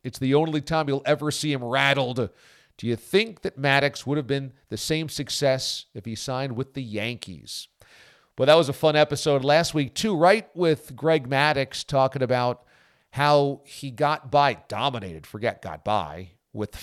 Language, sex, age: English, male, 40-59